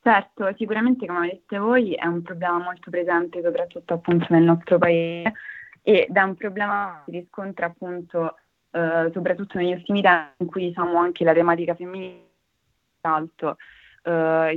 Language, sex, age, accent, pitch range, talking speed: Italian, female, 20-39, native, 165-180 Hz, 155 wpm